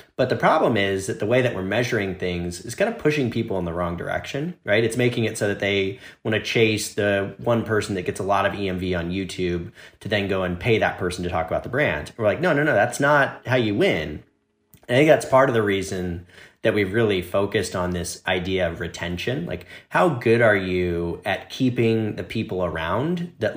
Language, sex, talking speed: English, male, 225 wpm